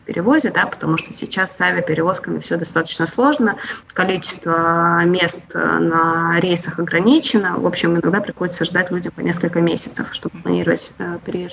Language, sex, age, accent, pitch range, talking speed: Russian, female, 20-39, native, 175-225 Hz, 140 wpm